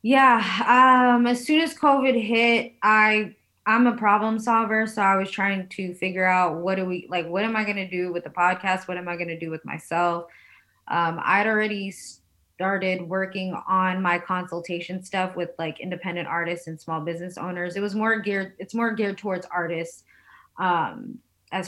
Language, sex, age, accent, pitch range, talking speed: English, female, 20-39, American, 170-195 Hz, 190 wpm